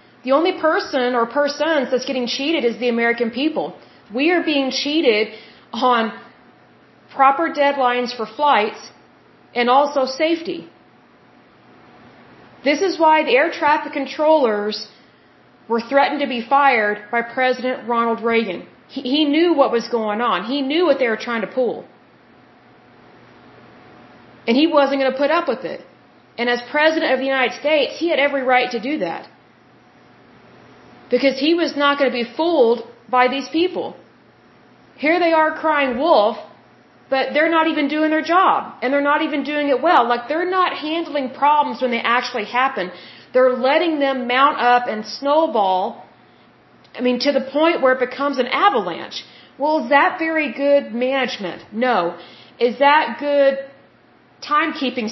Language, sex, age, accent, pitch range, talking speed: Hindi, female, 30-49, American, 240-300 Hz, 155 wpm